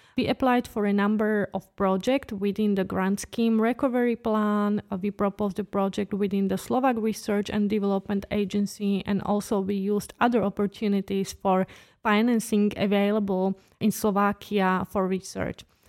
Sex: female